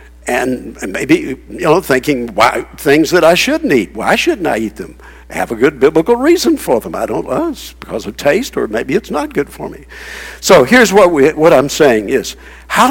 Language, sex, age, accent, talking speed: English, male, 60-79, American, 230 wpm